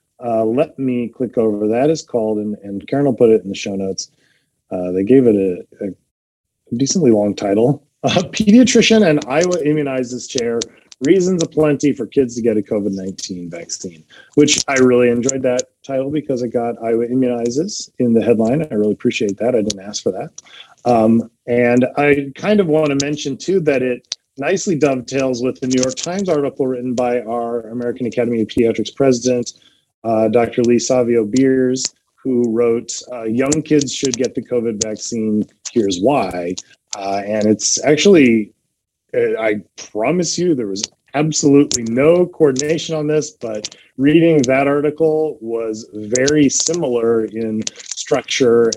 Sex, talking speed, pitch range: male, 160 wpm, 110-145 Hz